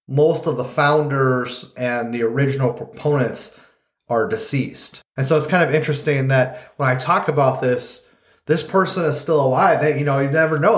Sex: male